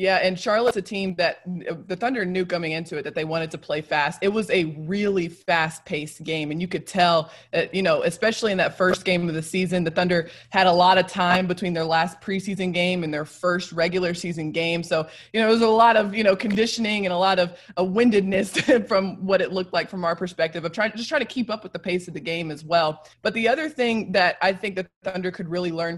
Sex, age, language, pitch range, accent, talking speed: female, 20-39, English, 170-195 Hz, American, 255 wpm